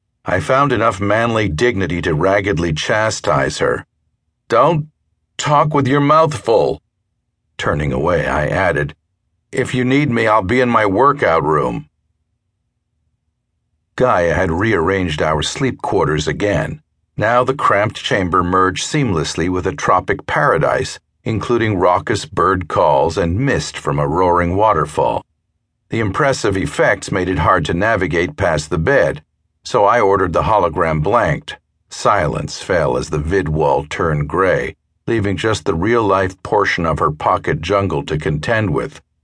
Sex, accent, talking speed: male, American, 145 wpm